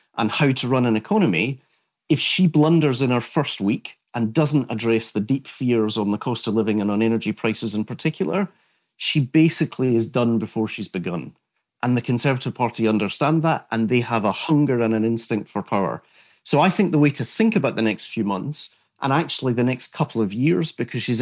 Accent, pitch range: British, 115-145 Hz